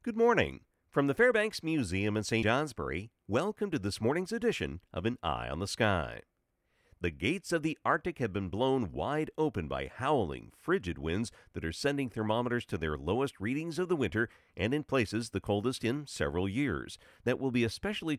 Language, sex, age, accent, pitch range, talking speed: English, male, 50-69, American, 90-125 Hz, 190 wpm